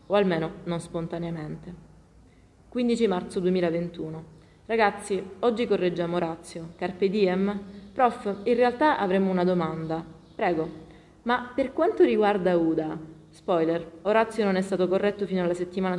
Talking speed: 130 wpm